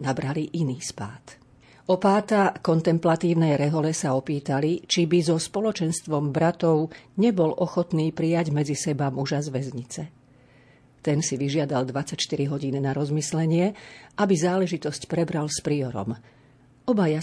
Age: 40-59